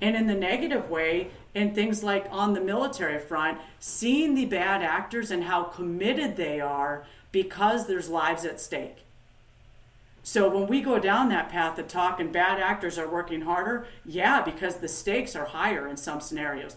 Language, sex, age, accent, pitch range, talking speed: English, female, 40-59, American, 165-205 Hz, 180 wpm